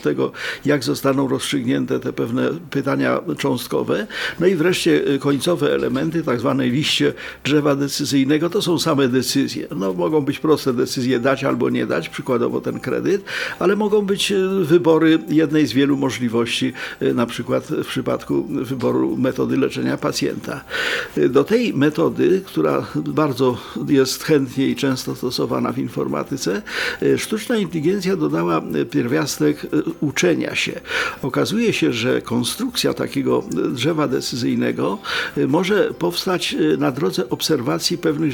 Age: 50-69